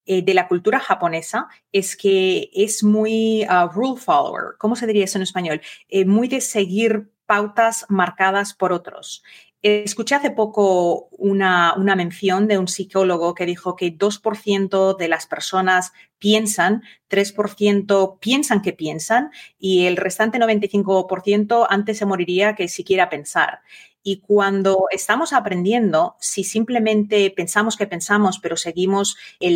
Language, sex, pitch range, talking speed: Spanish, female, 180-210 Hz, 140 wpm